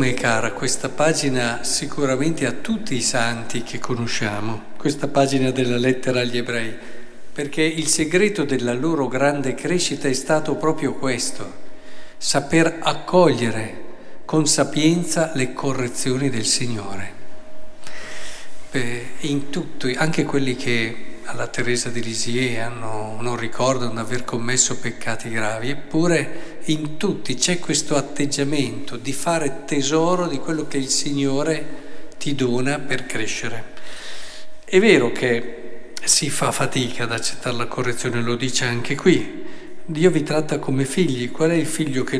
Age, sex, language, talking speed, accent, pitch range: 50-69, male, Italian, 135 wpm, native, 125-155 Hz